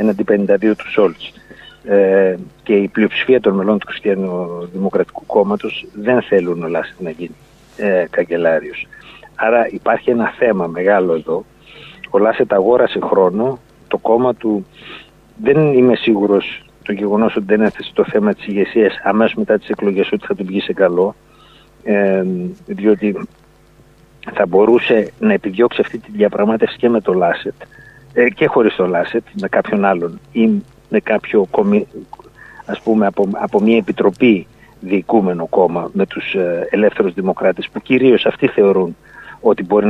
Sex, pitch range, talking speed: male, 100-130 Hz, 145 wpm